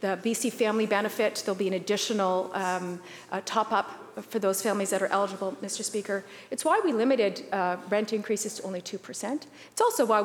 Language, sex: English, female